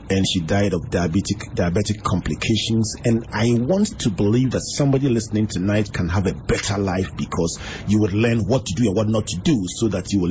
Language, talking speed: English, 215 wpm